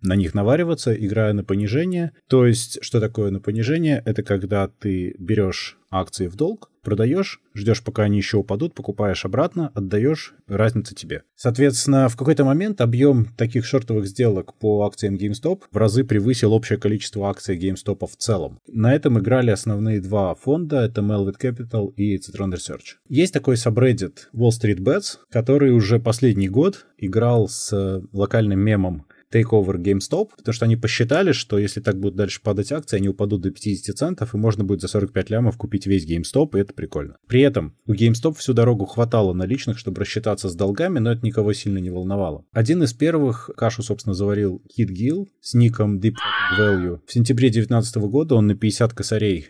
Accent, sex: native, male